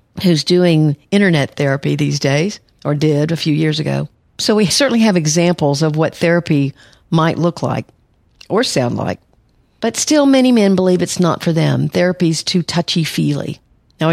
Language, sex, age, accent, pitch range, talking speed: English, female, 50-69, American, 145-185 Hz, 170 wpm